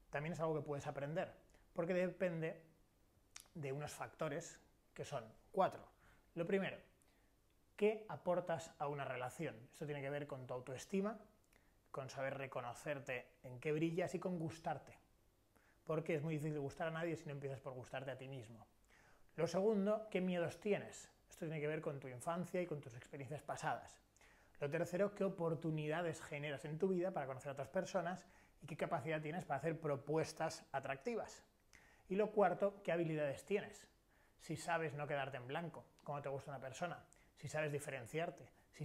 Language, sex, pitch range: Spanish, male, 135-170 Hz